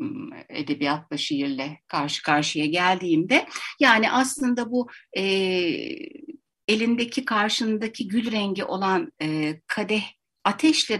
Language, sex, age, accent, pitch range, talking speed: Turkish, female, 60-79, native, 180-280 Hz, 95 wpm